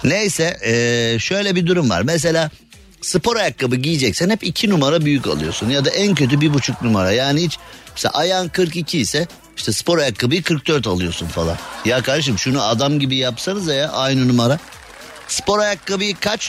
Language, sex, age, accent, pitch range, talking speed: Turkish, male, 50-69, native, 110-150 Hz, 165 wpm